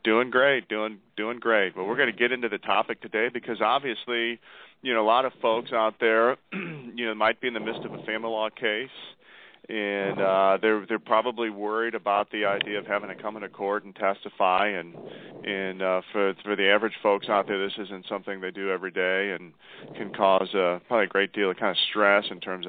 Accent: American